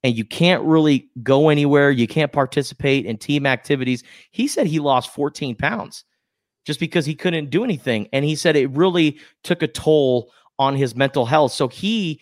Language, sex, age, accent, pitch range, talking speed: English, male, 30-49, American, 125-150 Hz, 185 wpm